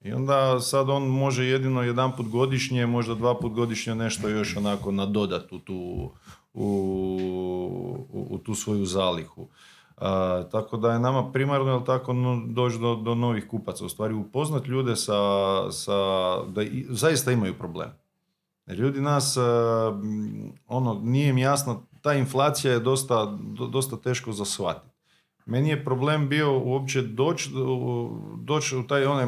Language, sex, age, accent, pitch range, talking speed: Croatian, male, 40-59, Serbian, 105-130 Hz, 150 wpm